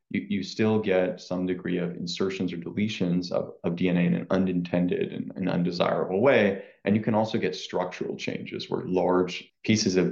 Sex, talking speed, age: male, 170 wpm, 30-49